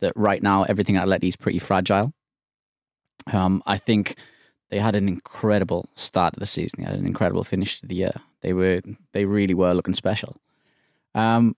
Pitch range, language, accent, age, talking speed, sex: 100-115 Hz, English, British, 20-39, 185 wpm, male